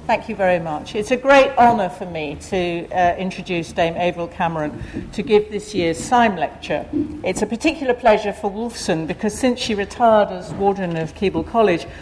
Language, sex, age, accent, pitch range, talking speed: English, female, 60-79, British, 170-215 Hz, 185 wpm